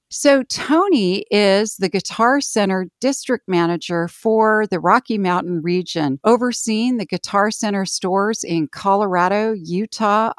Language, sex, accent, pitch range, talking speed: English, female, American, 175-225 Hz, 120 wpm